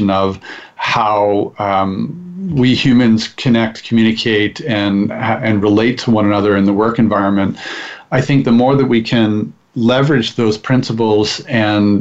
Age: 40-59